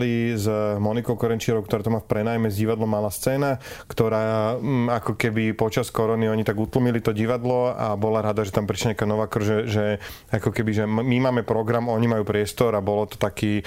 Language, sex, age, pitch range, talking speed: Slovak, male, 30-49, 105-120 Hz, 200 wpm